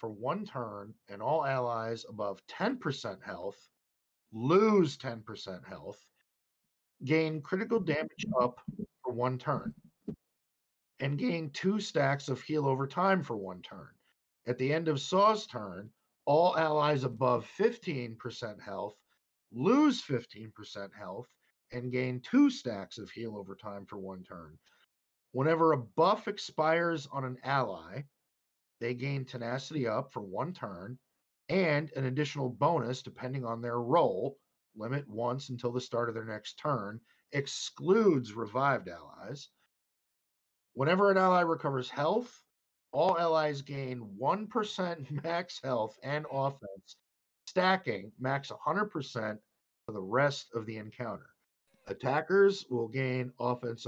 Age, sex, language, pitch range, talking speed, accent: 50-69, male, English, 120-160 Hz, 130 wpm, American